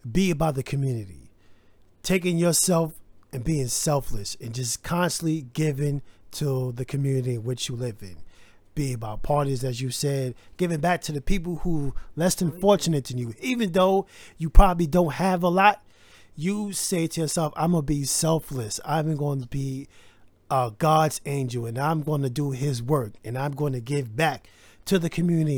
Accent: American